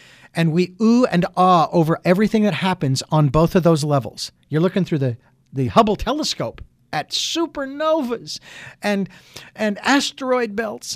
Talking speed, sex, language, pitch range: 150 wpm, male, English, 150-220 Hz